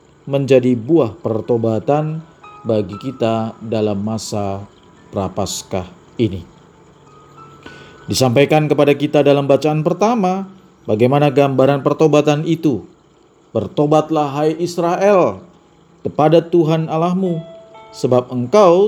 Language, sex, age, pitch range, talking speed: Indonesian, male, 40-59, 115-160 Hz, 85 wpm